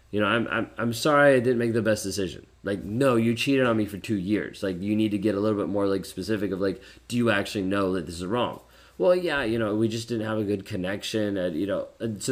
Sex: male